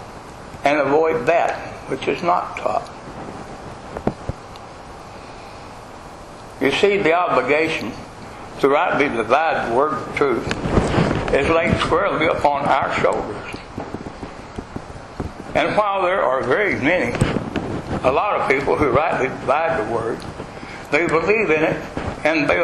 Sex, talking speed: male, 120 wpm